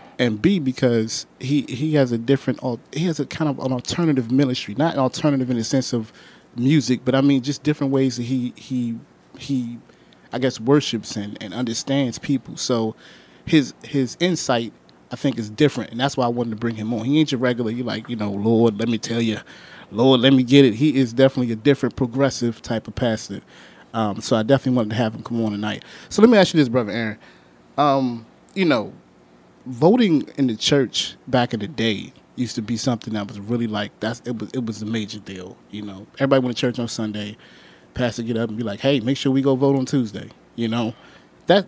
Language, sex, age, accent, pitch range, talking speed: English, male, 30-49, American, 110-135 Hz, 225 wpm